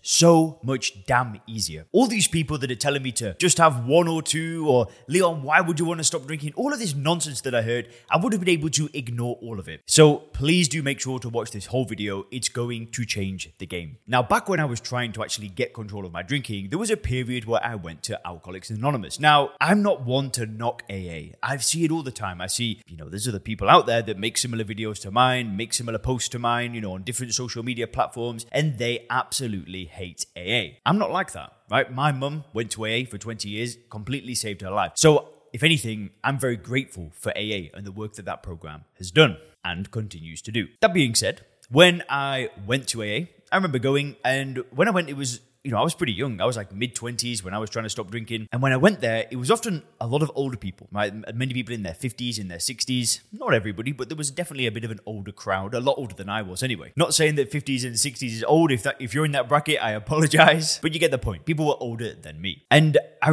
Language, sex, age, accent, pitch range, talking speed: English, male, 20-39, British, 110-150 Hz, 255 wpm